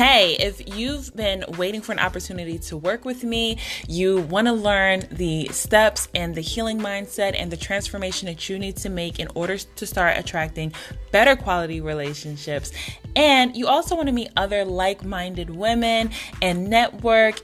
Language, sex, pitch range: English, female, 170-215 Hz